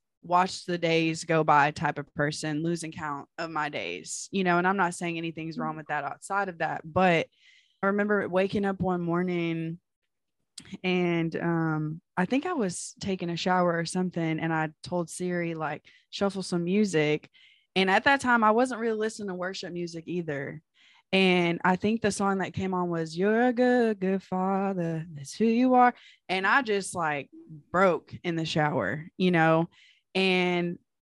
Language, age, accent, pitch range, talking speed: English, 20-39, American, 165-195 Hz, 180 wpm